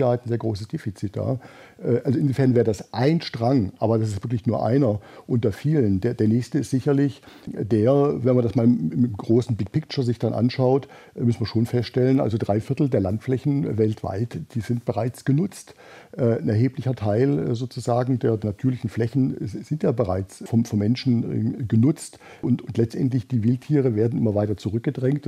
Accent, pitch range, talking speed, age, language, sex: German, 110-135 Hz, 175 wpm, 50-69, German, male